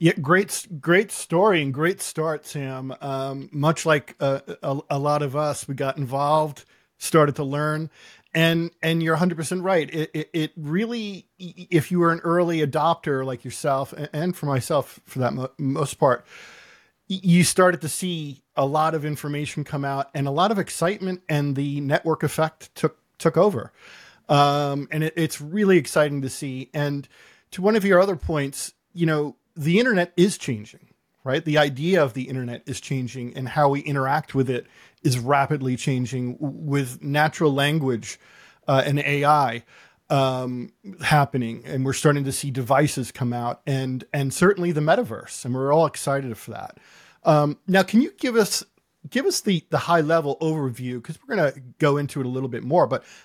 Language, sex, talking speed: English, male, 180 wpm